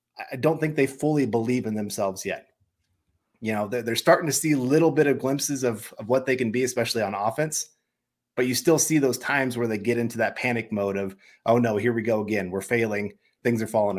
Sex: male